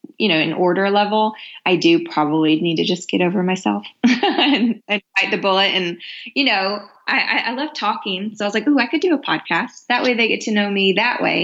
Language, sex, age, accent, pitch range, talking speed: English, female, 20-39, American, 165-210 Hz, 240 wpm